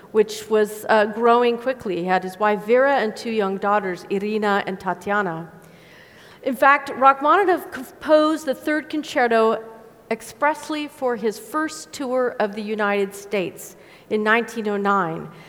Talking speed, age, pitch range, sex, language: 135 wpm, 40-59, 210-265 Hz, female, English